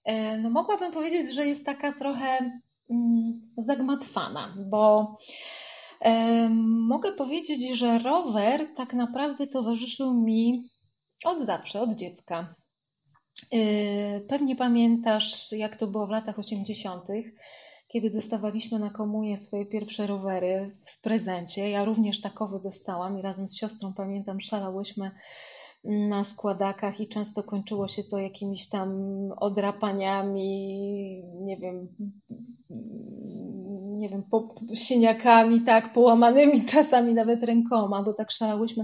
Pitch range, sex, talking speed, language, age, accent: 205-250 Hz, female, 110 wpm, Polish, 30-49, native